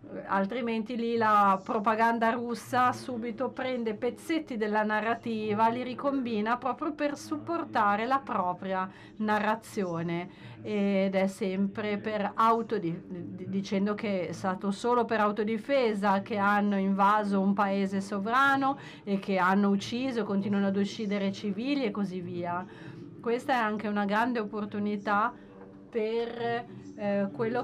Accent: native